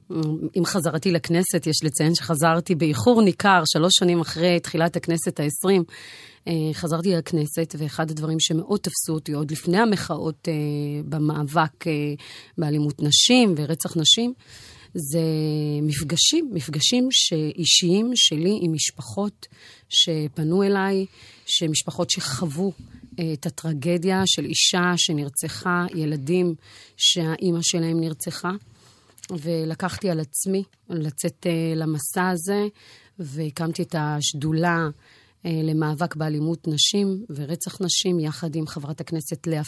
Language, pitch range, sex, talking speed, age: Hebrew, 155-185 Hz, female, 110 wpm, 30-49